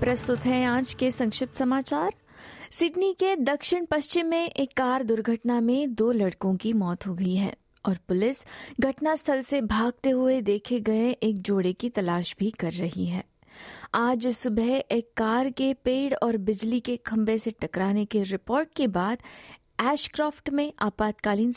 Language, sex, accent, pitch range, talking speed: Hindi, female, native, 215-280 Hz, 160 wpm